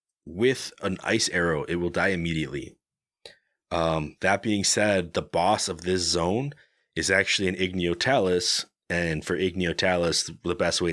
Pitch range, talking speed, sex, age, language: 75-90 Hz, 155 wpm, male, 30-49, English